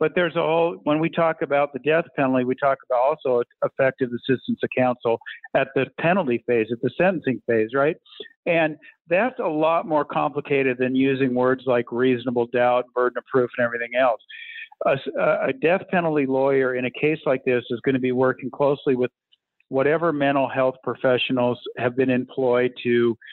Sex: male